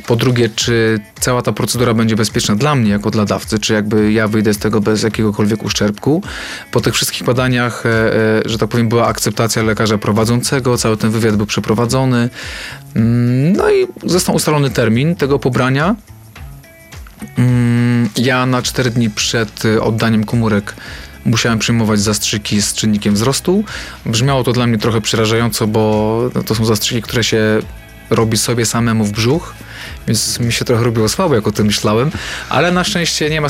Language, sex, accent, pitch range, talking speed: Polish, male, native, 110-130 Hz, 160 wpm